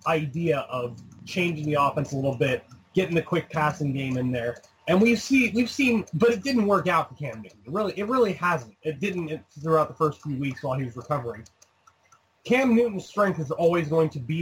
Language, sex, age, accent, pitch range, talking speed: English, male, 30-49, American, 140-185 Hz, 215 wpm